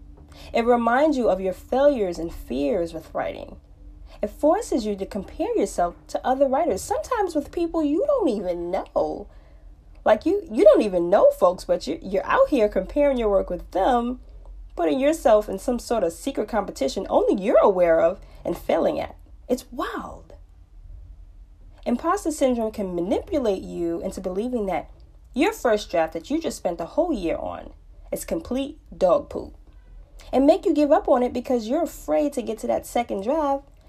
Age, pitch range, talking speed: 20-39, 175-275 Hz, 175 wpm